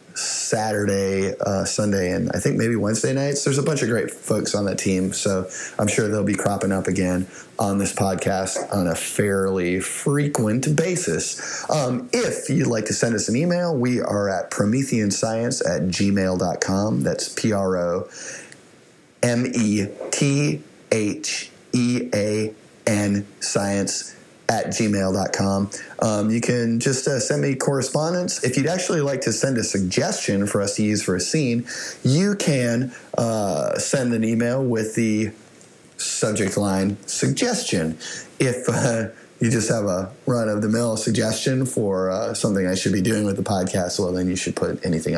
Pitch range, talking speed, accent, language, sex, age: 100-125 Hz, 150 wpm, American, English, male, 30-49